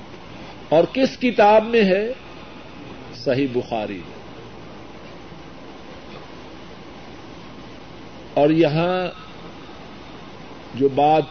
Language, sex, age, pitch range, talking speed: Urdu, male, 50-69, 170-240 Hz, 60 wpm